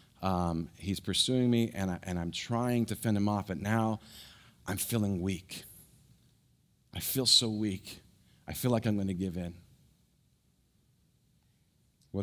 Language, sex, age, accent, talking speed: English, male, 30-49, American, 140 wpm